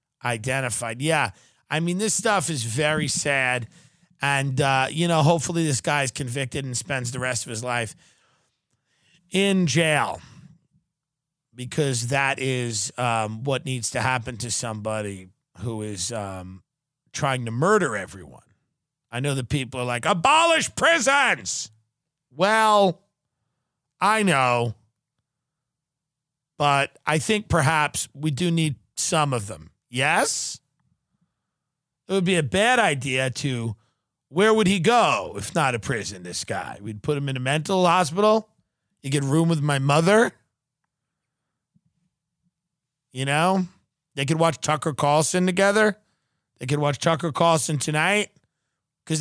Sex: male